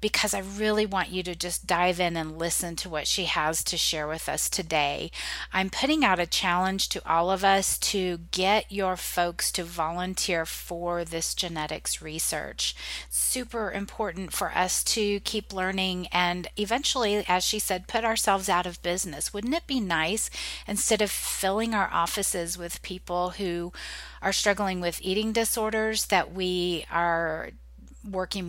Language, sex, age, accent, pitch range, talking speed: English, female, 40-59, American, 170-210 Hz, 160 wpm